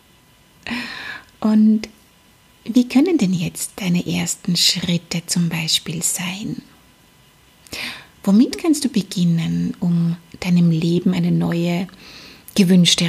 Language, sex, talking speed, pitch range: German, female, 95 wpm, 180-250 Hz